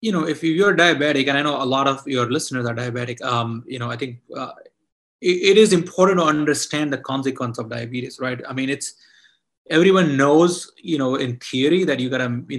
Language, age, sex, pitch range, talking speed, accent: English, 30-49, male, 125-155 Hz, 220 wpm, Indian